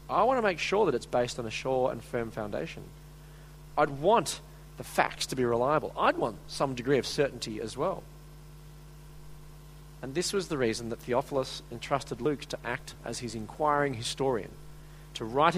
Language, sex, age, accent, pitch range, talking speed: English, male, 40-59, Australian, 130-155 Hz, 175 wpm